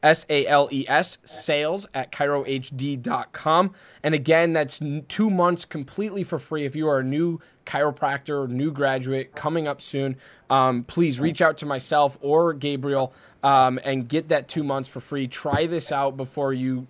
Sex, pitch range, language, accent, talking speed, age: male, 135-160 Hz, English, American, 160 wpm, 20-39